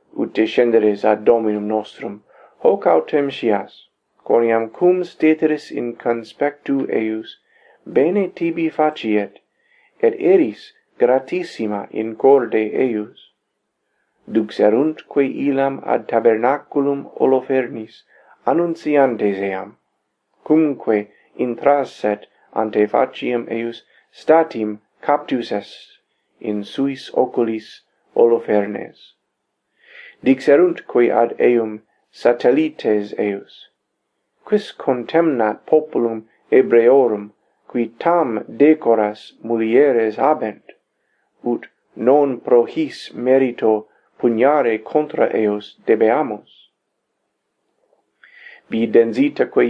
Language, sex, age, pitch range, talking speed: English, male, 40-59, 110-165 Hz, 80 wpm